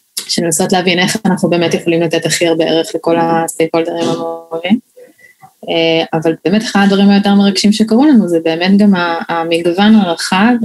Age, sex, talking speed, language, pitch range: 20-39, female, 150 wpm, Hebrew, 170-210 Hz